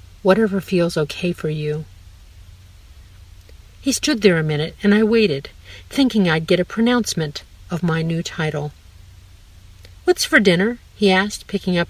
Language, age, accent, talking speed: English, 50-69, American, 145 wpm